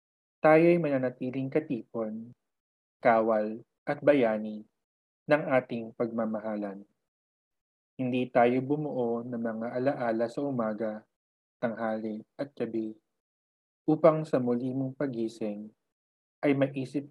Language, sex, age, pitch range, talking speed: Filipino, male, 20-39, 105-135 Hz, 95 wpm